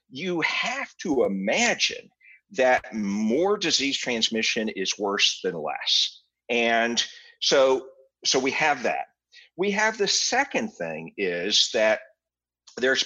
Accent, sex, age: American, male, 50-69